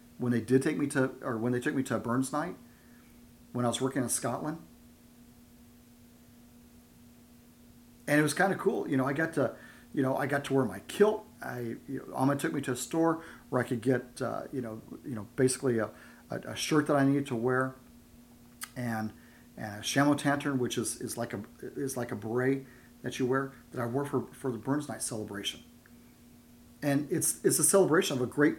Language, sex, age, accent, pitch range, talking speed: English, male, 40-59, American, 120-140 Hz, 210 wpm